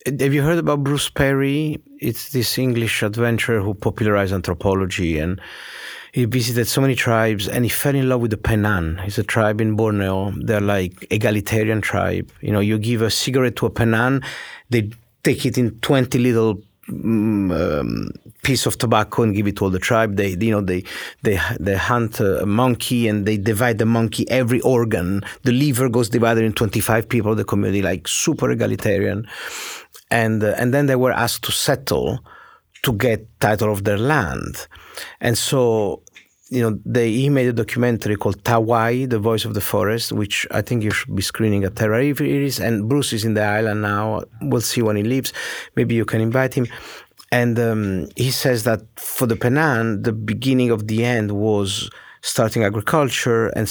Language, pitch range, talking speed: English, 105-125 Hz, 185 wpm